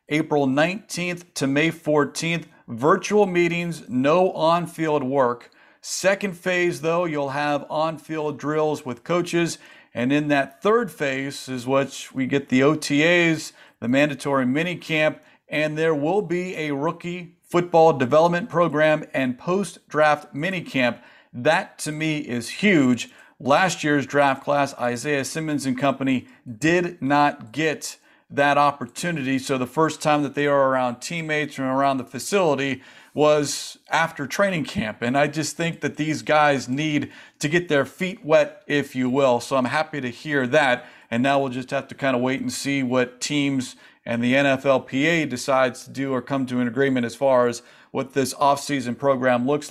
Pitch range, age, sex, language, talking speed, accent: 135-165 Hz, 40-59, male, English, 170 wpm, American